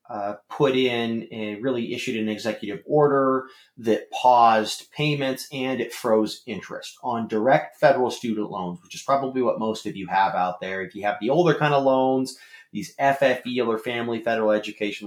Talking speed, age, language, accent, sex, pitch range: 180 wpm, 30-49, English, American, male, 100-130 Hz